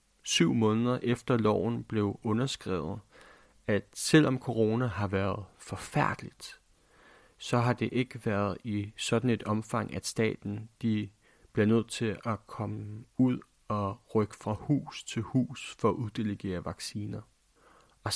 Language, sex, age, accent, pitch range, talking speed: Danish, male, 30-49, native, 105-125 Hz, 135 wpm